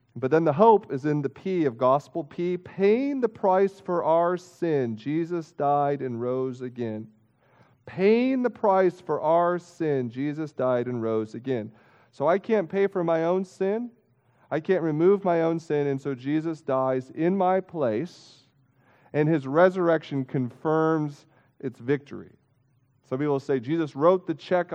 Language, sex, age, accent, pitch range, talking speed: English, male, 40-59, American, 125-170 Hz, 160 wpm